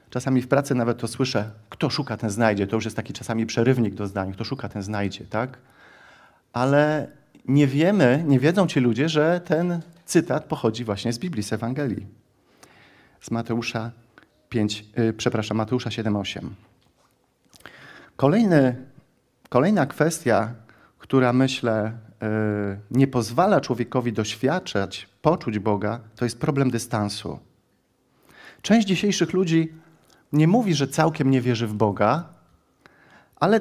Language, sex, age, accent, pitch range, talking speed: Polish, male, 40-59, native, 110-140 Hz, 125 wpm